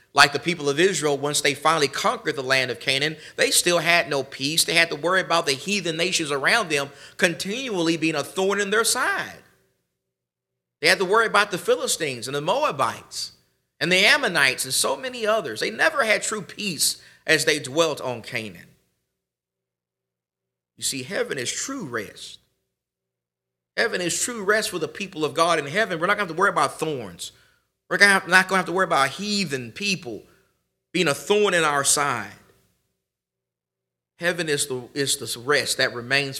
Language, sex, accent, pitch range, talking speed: English, male, American, 125-175 Hz, 185 wpm